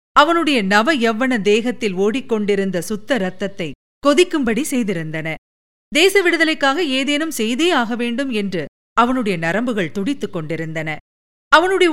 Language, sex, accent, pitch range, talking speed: Tamil, female, native, 205-295 Hz, 105 wpm